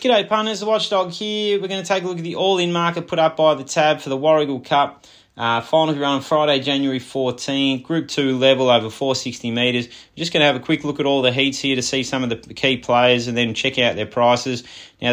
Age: 20-39